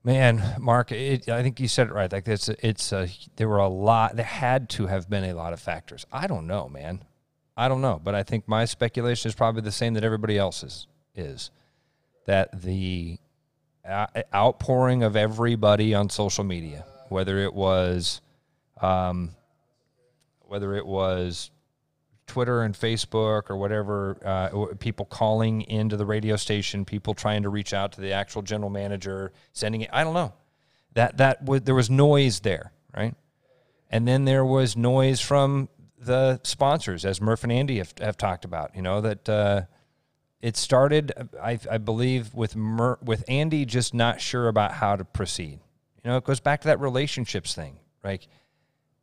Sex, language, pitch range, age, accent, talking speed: male, English, 100-130 Hz, 40-59, American, 175 wpm